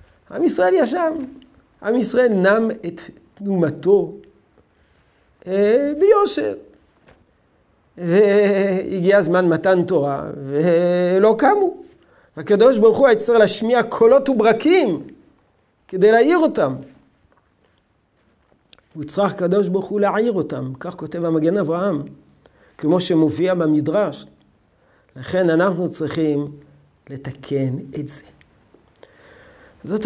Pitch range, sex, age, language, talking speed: 145-205 Hz, male, 50-69, Hebrew, 90 wpm